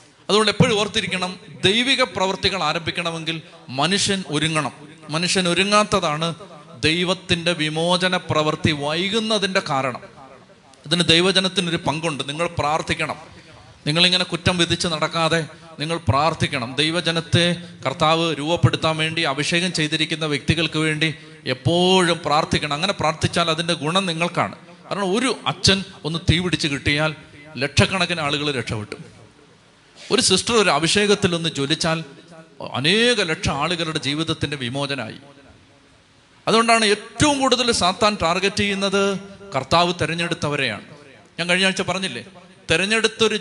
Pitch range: 155-190 Hz